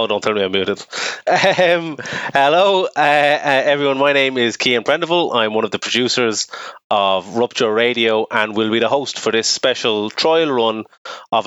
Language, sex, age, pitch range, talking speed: English, male, 20-39, 120-155 Hz, 180 wpm